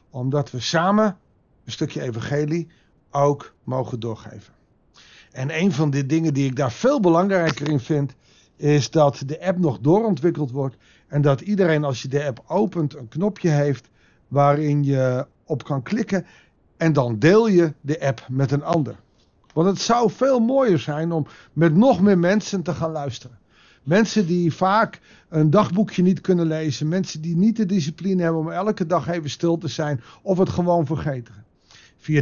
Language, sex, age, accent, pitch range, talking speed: Dutch, male, 50-69, Dutch, 140-185 Hz, 175 wpm